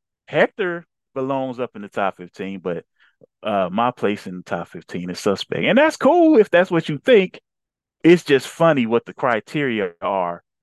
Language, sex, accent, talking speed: English, male, American, 180 wpm